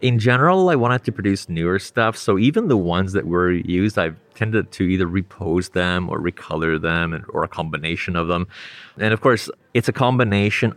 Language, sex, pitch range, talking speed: English, male, 90-110 Hz, 195 wpm